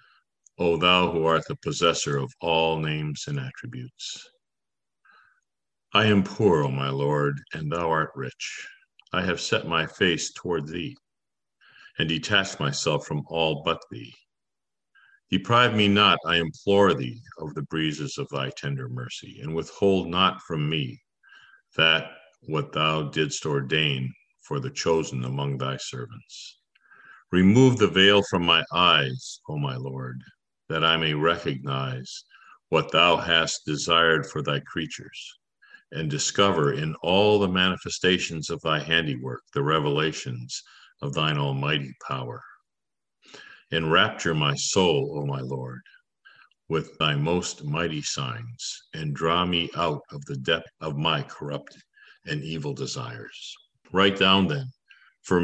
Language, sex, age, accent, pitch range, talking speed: English, male, 50-69, American, 70-95 Hz, 135 wpm